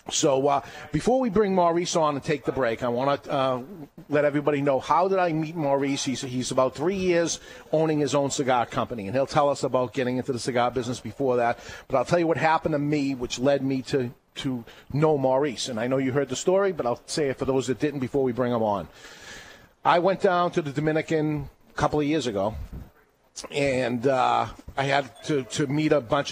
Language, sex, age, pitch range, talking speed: English, male, 40-59, 130-155 Hz, 225 wpm